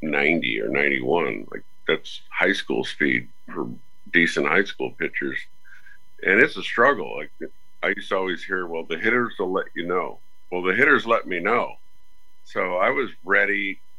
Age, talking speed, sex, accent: 50-69, 170 wpm, male, American